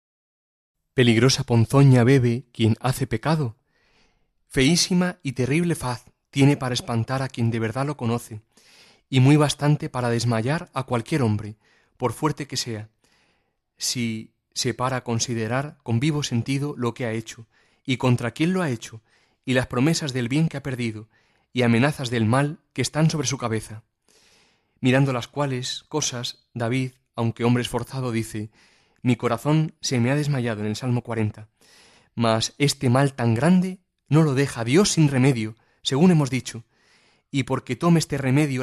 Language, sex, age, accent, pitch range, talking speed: Spanish, male, 30-49, Spanish, 115-145 Hz, 160 wpm